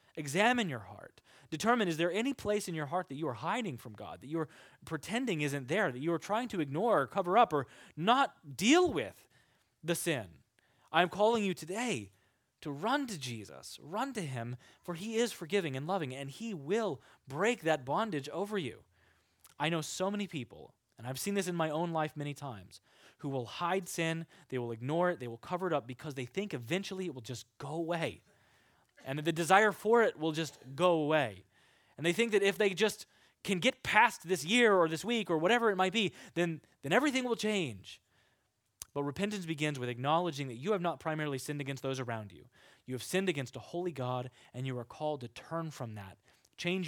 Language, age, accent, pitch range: English, 20-39, American, 125-180 Hz